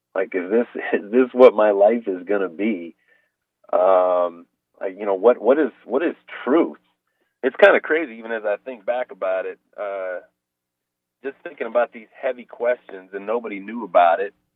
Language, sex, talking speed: English, male, 180 wpm